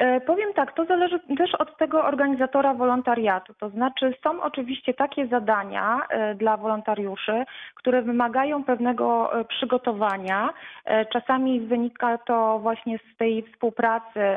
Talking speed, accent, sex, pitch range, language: 115 wpm, native, female, 215-245 Hz, Polish